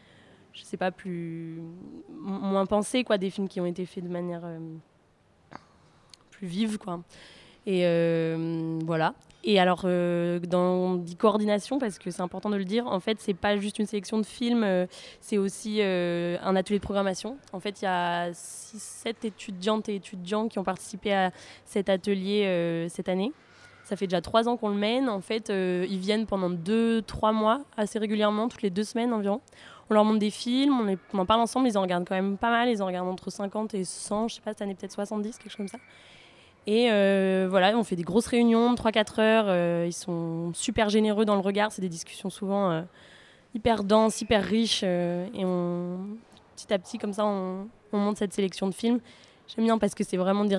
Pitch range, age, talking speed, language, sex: 180-215 Hz, 20-39, 215 wpm, French, female